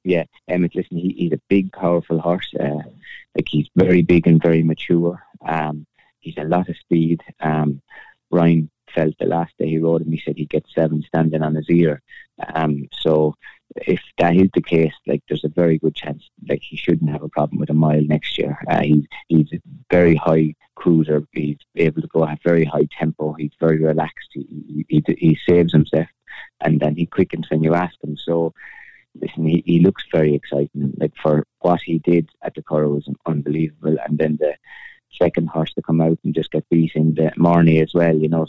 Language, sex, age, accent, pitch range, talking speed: English, male, 20-39, British, 75-85 Hz, 205 wpm